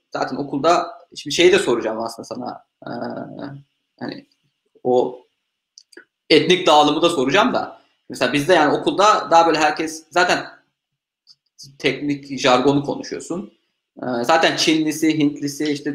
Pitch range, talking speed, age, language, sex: 135-175 Hz, 120 wpm, 30-49, Turkish, male